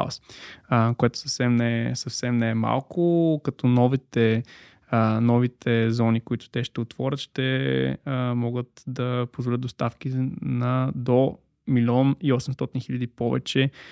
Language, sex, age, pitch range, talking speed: Bulgarian, male, 20-39, 120-140 Hz, 110 wpm